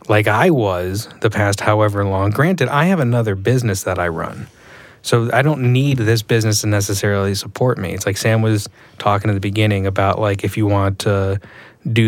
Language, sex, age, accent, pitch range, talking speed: English, male, 30-49, American, 100-120 Hz, 200 wpm